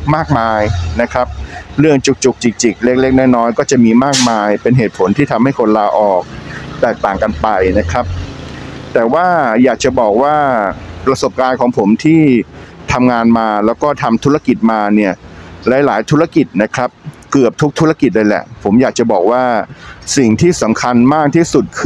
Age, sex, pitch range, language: 60-79, male, 110-130 Hz, Thai